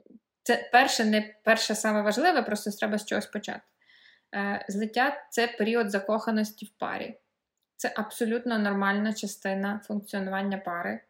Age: 20-39